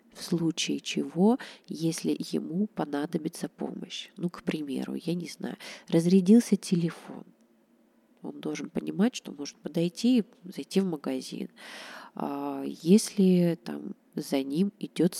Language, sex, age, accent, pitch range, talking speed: Russian, female, 20-39, native, 160-220 Hz, 120 wpm